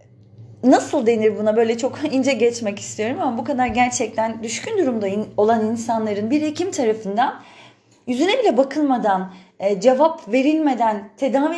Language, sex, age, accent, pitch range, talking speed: Turkish, female, 40-59, native, 215-275 Hz, 135 wpm